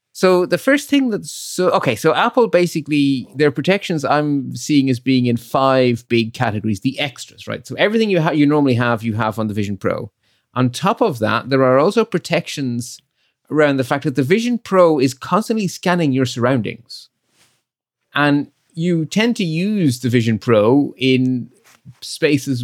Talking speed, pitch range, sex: 175 wpm, 120-155 Hz, male